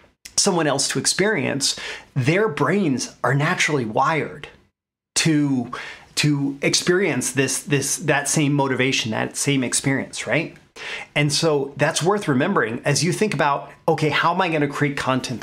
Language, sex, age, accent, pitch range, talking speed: English, male, 30-49, American, 120-150 Hz, 150 wpm